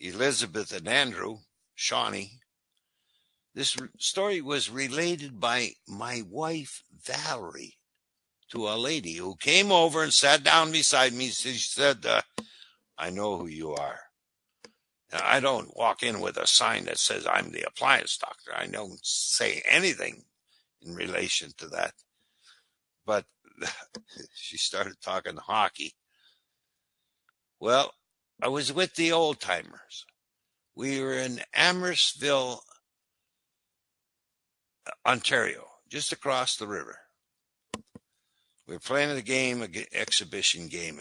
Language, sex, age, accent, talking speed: English, male, 60-79, American, 115 wpm